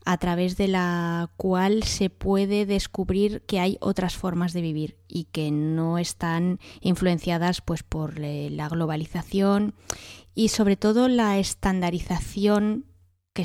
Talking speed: 125 wpm